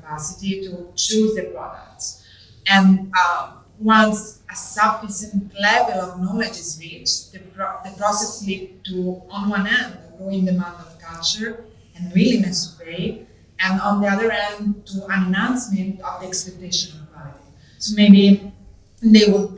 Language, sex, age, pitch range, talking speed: English, female, 30-49, 175-205 Hz, 150 wpm